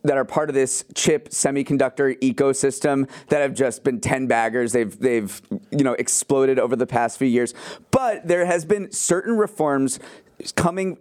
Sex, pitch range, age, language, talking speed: male, 120-150 Hz, 30-49, English, 170 wpm